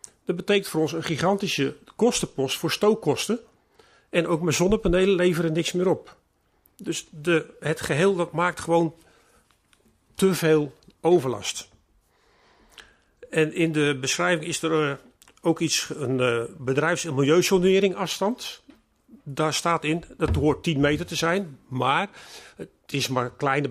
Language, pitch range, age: Dutch, 150-180 Hz, 40-59